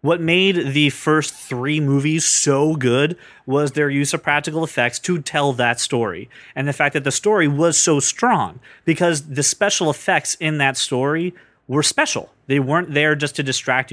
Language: English